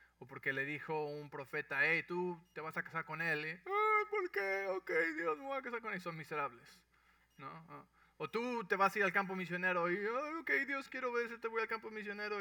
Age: 20-39